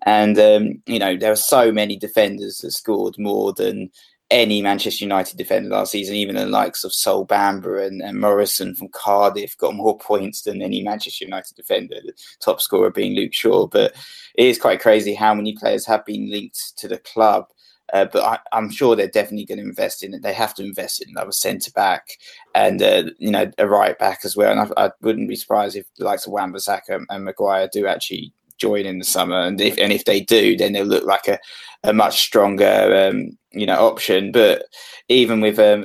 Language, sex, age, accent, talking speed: English, male, 20-39, British, 215 wpm